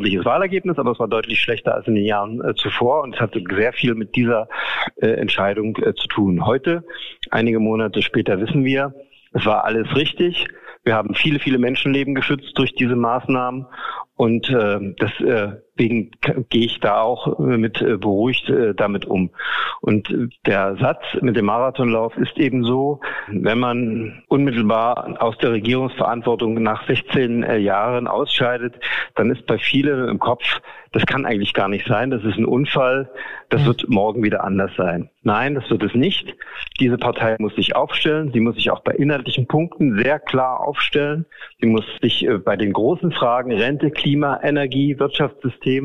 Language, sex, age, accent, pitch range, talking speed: German, male, 50-69, German, 115-140 Hz, 170 wpm